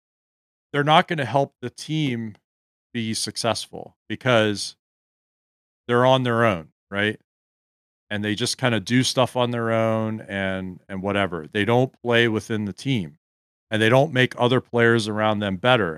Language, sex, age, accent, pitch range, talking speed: English, male, 40-59, American, 100-125 Hz, 160 wpm